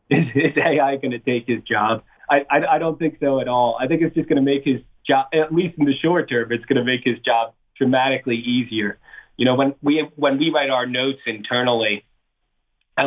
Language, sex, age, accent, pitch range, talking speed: English, male, 30-49, American, 120-145 Hz, 225 wpm